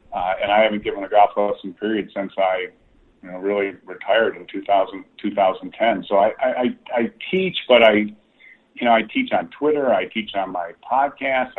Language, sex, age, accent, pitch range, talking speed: English, male, 40-59, American, 100-120 Hz, 205 wpm